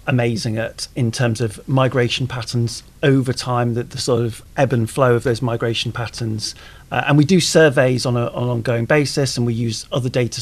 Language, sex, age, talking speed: English, male, 40-59, 200 wpm